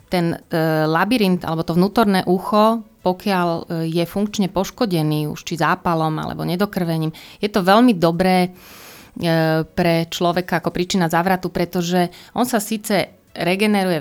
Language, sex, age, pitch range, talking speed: Slovak, female, 30-49, 165-200 Hz, 135 wpm